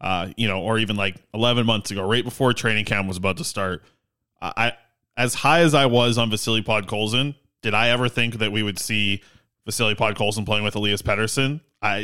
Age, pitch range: 20-39, 110-130 Hz